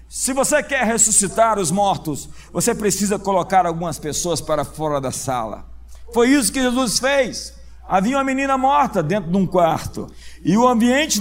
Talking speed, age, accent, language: 165 wpm, 50-69, Brazilian, Portuguese